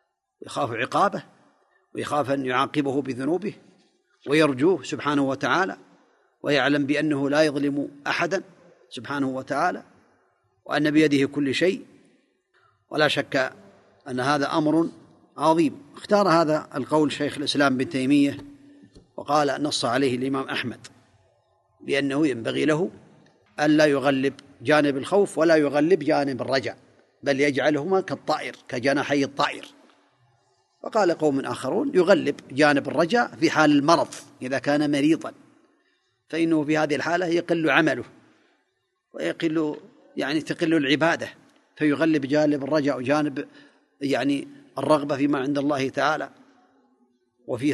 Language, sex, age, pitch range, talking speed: Arabic, male, 40-59, 135-160 Hz, 110 wpm